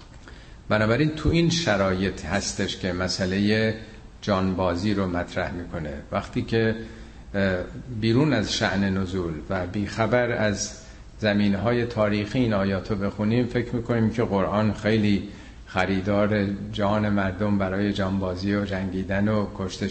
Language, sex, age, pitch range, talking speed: Persian, male, 50-69, 95-115 Hz, 120 wpm